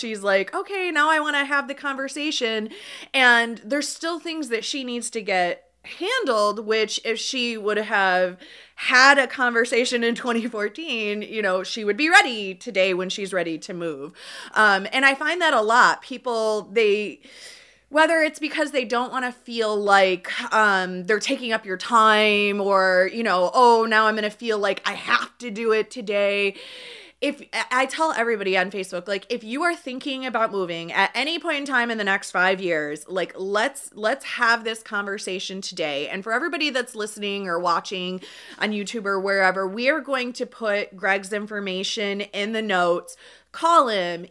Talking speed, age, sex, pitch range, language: 185 wpm, 30-49, female, 195-255 Hz, English